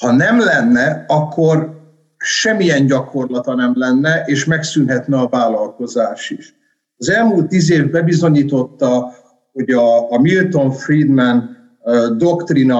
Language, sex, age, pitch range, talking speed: Hungarian, male, 50-69, 125-170 Hz, 110 wpm